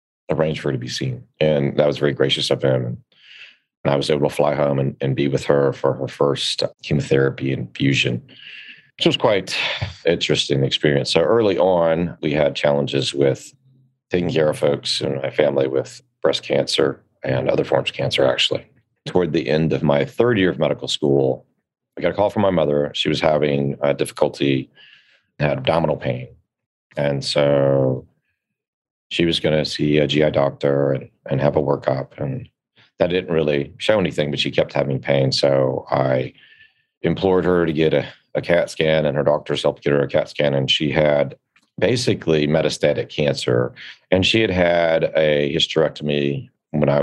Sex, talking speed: male, 180 wpm